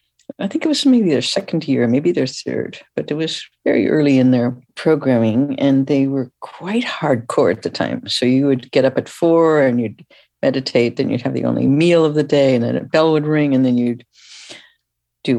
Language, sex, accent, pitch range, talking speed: English, female, American, 125-165 Hz, 220 wpm